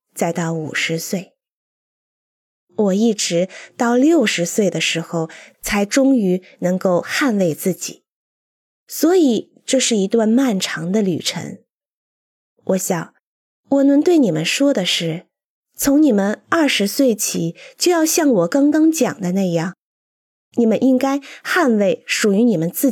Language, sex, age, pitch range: Chinese, female, 20-39, 185-275 Hz